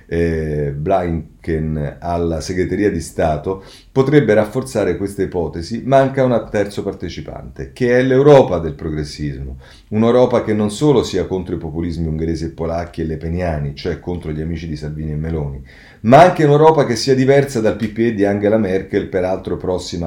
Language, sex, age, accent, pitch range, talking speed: Italian, male, 40-59, native, 80-105 Hz, 165 wpm